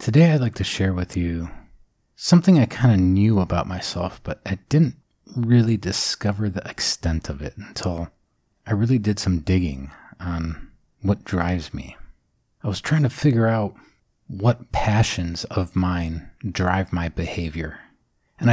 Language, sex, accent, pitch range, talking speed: English, male, American, 90-115 Hz, 150 wpm